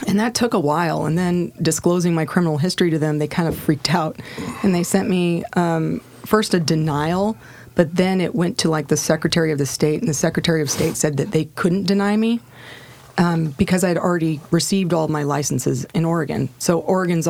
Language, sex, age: English, female, 30-49